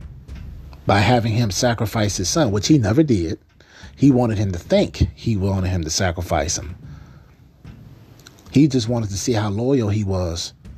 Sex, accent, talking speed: male, American, 165 wpm